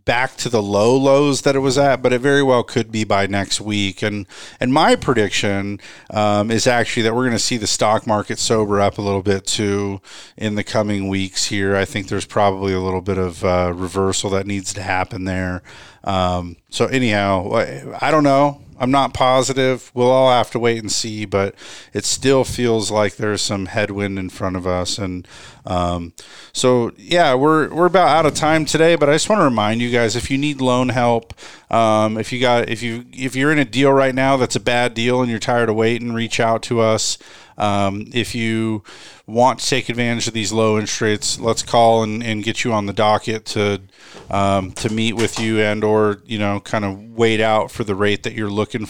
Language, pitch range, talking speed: English, 100-125 Hz, 220 wpm